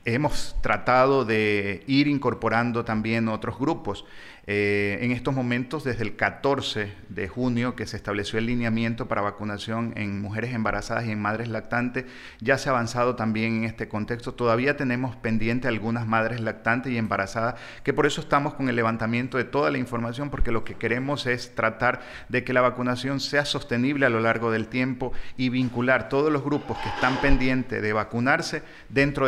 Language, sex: Spanish, male